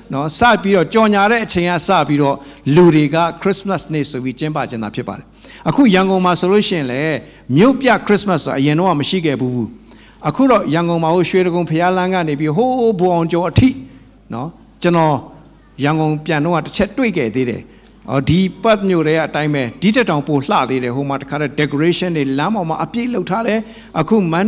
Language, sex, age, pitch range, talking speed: English, male, 60-79, 150-215 Hz, 30 wpm